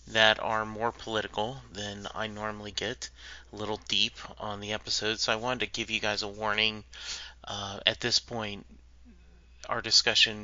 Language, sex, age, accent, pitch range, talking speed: English, male, 30-49, American, 100-110 Hz, 165 wpm